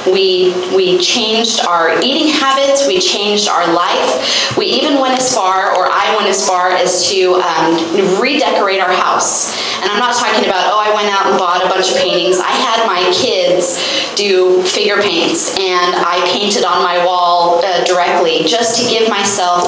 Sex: female